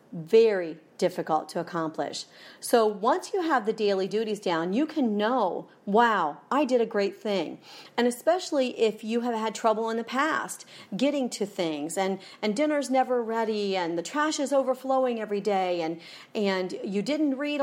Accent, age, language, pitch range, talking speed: American, 40-59, English, 190-255 Hz, 175 wpm